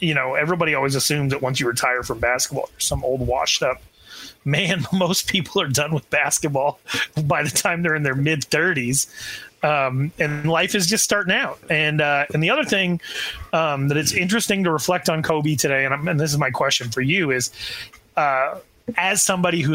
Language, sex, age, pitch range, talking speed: English, male, 30-49, 135-170 Hz, 200 wpm